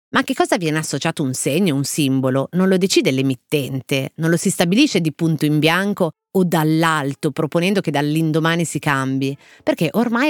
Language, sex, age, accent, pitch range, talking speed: Italian, female, 30-49, native, 145-190 Hz, 180 wpm